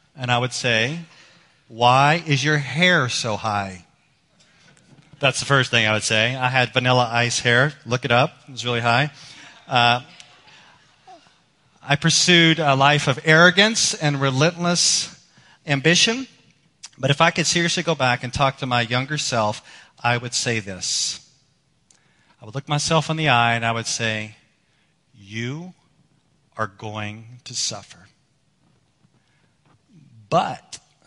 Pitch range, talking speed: 125-160 Hz, 140 wpm